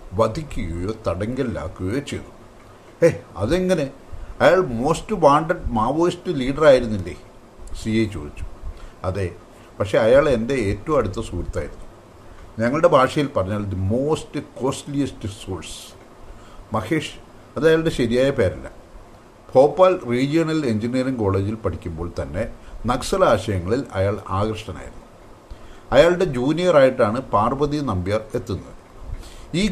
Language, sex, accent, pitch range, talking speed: English, male, Indian, 95-140 Hz, 70 wpm